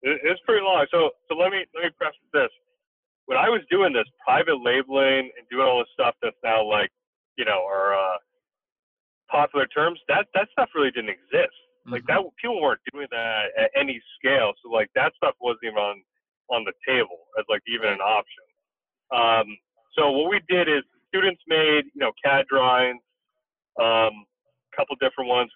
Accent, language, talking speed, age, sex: American, English, 190 wpm, 30-49, male